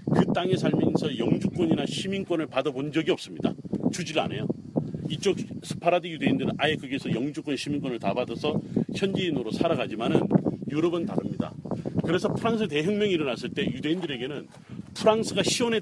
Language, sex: Korean, male